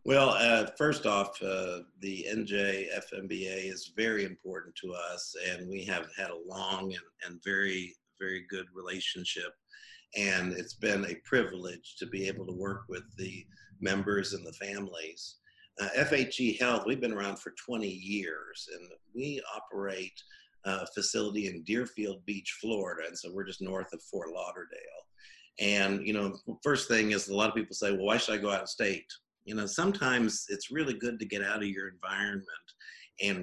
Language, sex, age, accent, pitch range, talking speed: English, male, 50-69, American, 95-105 Hz, 175 wpm